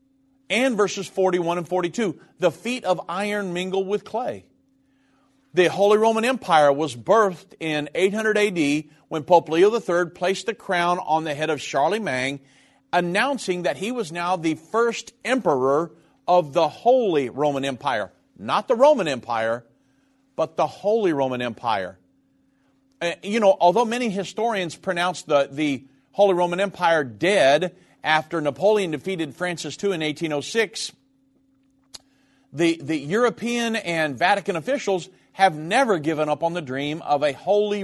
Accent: American